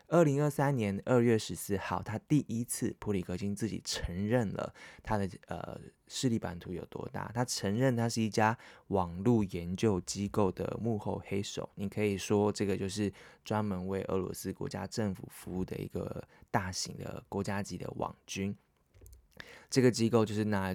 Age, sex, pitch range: 20-39, male, 95-110 Hz